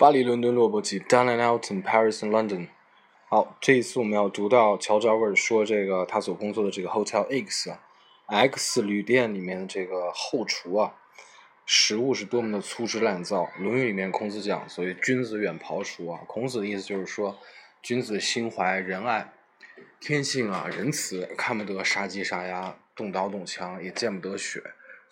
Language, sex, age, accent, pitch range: Chinese, male, 20-39, native, 95-120 Hz